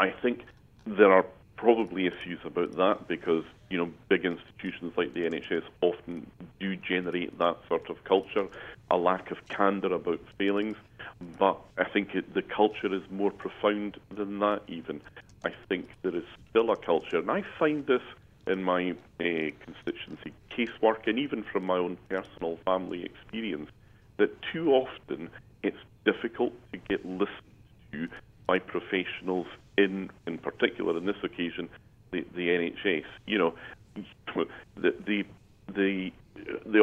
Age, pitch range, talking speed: 40-59, 90-105 Hz, 145 wpm